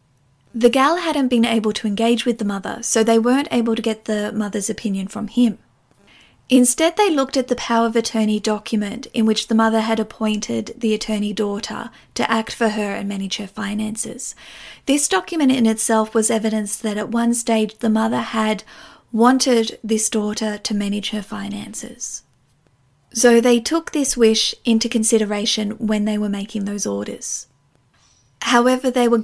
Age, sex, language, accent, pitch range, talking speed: 40-59, female, English, Australian, 215-235 Hz, 170 wpm